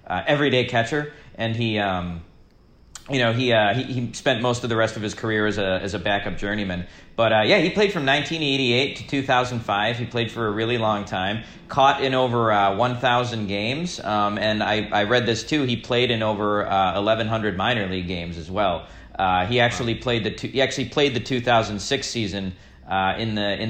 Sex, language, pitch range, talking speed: male, English, 100-120 Hz, 245 wpm